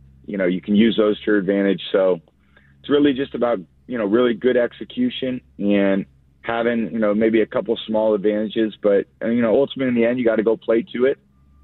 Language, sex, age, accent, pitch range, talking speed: English, male, 30-49, American, 70-105 Hz, 225 wpm